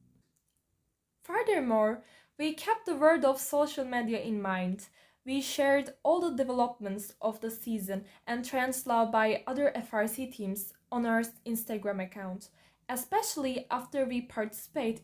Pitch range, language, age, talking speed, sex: 220-290 Hz, English, 10-29, 130 wpm, female